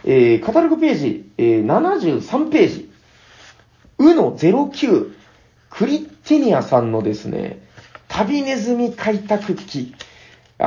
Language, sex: Japanese, male